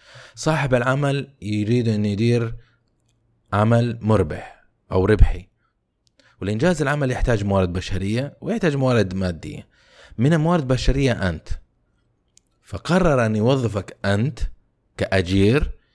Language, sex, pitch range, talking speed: Arabic, male, 100-125 Hz, 100 wpm